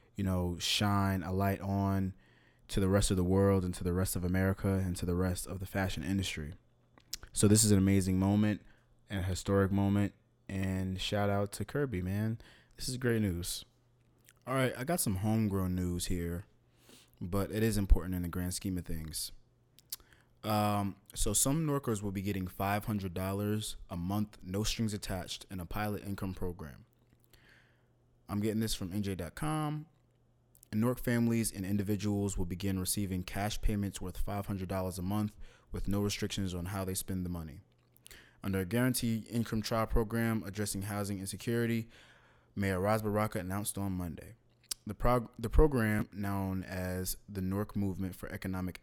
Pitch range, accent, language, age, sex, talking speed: 95-110 Hz, American, English, 20-39, male, 165 wpm